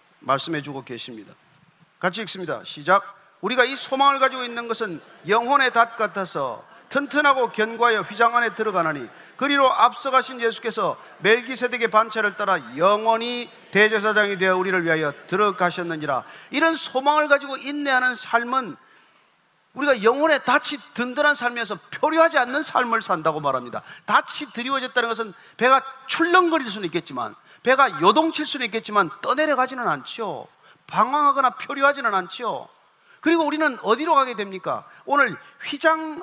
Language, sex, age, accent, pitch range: Korean, male, 40-59, native, 215-290 Hz